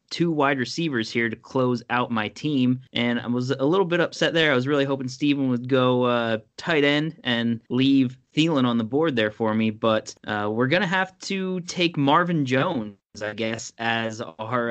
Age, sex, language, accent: 20-39, male, English, American